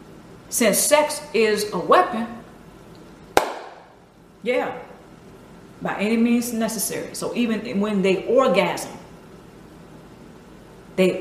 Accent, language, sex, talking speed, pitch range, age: American, English, female, 85 wpm, 180-235 Hz, 40-59